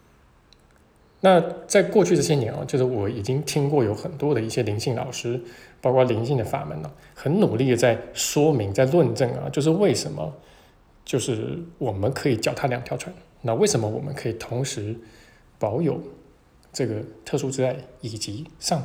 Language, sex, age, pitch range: Chinese, male, 20-39, 110-135 Hz